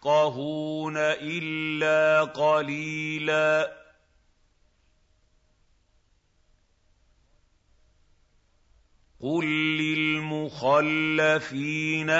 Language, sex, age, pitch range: Arabic, male, 50-69, 100-155 Hz